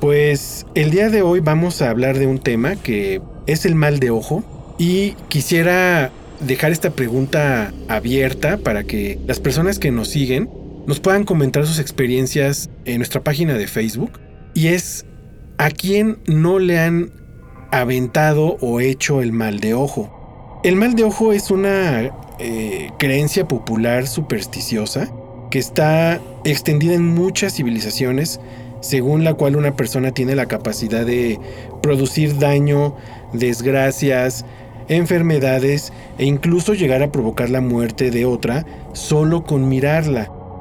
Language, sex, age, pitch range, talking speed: Spanish, male, 40-59, 125-165 Hz, 140 wpm